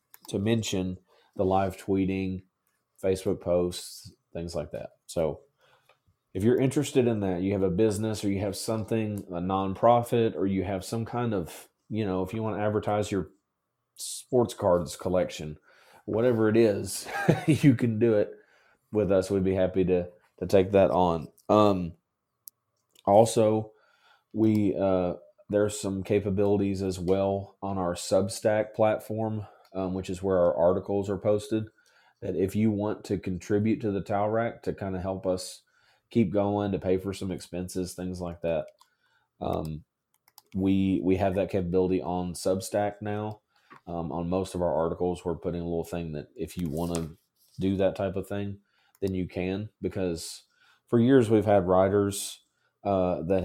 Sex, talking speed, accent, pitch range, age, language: male, 165 wpm, American, 95-105 Hz, 30-49, English